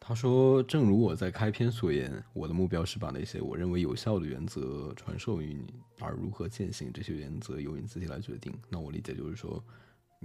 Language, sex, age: Chinese, male, 20-39